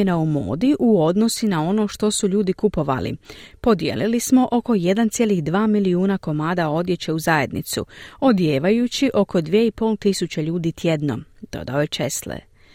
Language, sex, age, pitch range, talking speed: Croatian, female, 40-59, 155-210 Hz, 130 wpm